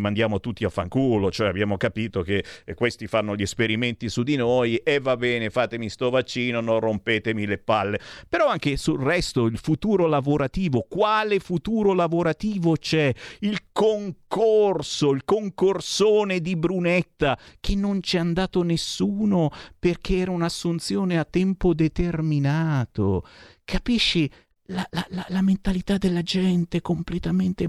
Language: Italian